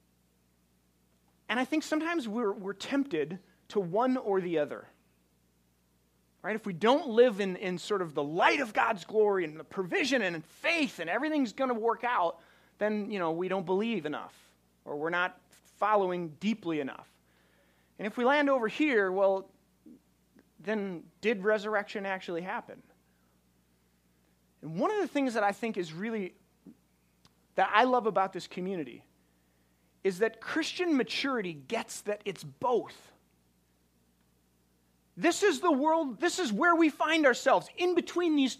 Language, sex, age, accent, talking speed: English, male, 30-49, American, 155 wpm